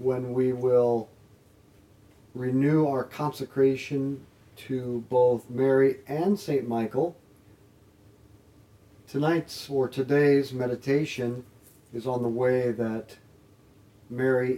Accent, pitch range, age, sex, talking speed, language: American, 105-140 Hz, 50-69, male, 90 wpm, English